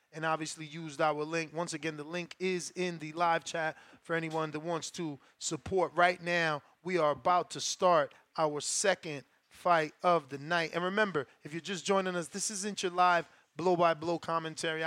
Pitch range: 155-185 Hz